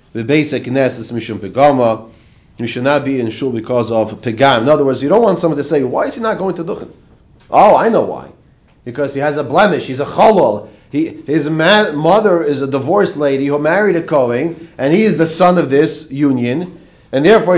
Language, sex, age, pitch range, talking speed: English, male, 30-49, 120-165 Hz, 215 wpm